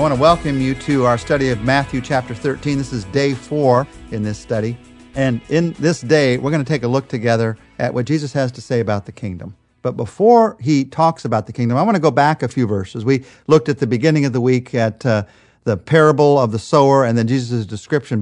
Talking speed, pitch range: 240 wpm, 115-145 Hz